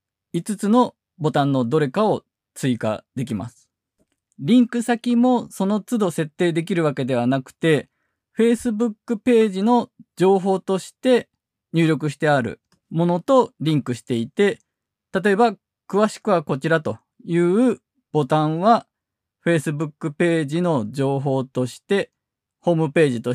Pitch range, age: 130-210 Hz, 20-39